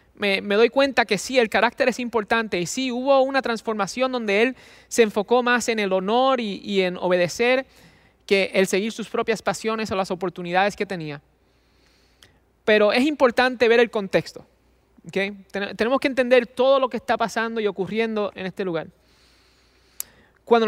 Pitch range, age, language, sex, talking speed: 195-240 Hz, 20-39, English, male, 170 wpm